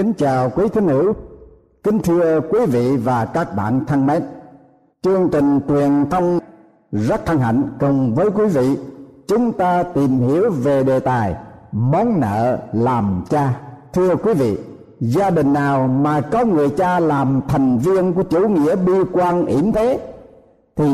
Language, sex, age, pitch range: Thai, male, 60-79, 125-175 Hz